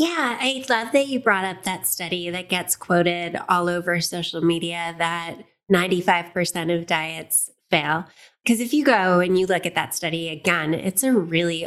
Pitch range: 160-190 Hz